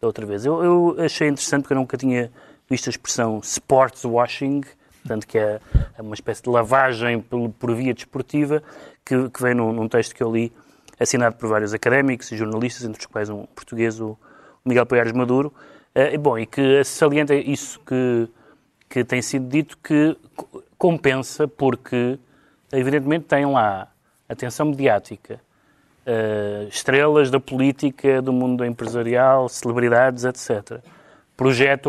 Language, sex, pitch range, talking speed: Portuguese, male, 120-145 Hz, 150 wpm